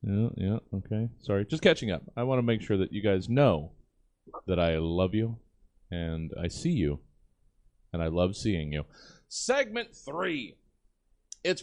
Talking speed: 165 wpm